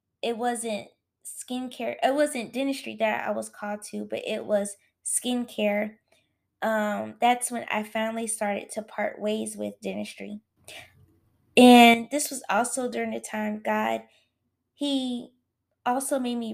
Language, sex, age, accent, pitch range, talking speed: English, female, 20-39, American, 205-235 Hz, 140 wpm